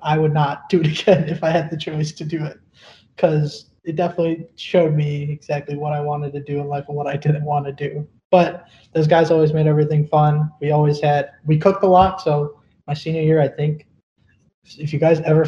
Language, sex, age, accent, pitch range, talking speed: English, male, 20-39, American, 140-165 Hz, 225 wpm